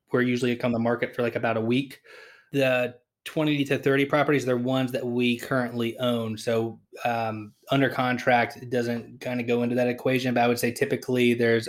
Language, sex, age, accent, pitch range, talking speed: English, male, 20-39, American, 115-130 Hz, 200 wpm